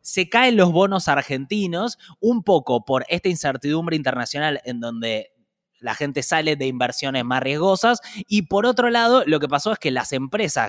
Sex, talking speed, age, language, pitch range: male, 175 wpm, 20-39, Spanish, 135-190 Hz